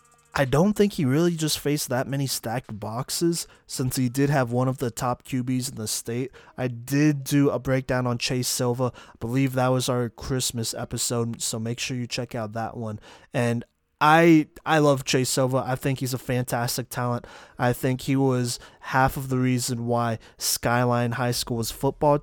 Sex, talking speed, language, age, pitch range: male, 190 wpm, English, 20-39, 120-135 Hz